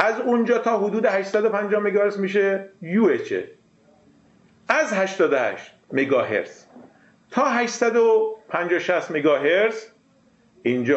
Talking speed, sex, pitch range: 90 wpm, male, 165-220 Hz